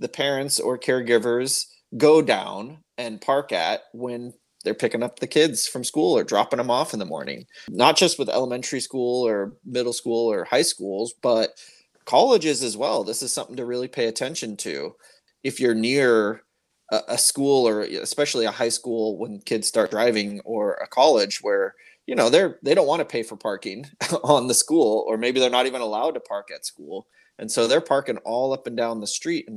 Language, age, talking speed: English, 20-39, 200 wpm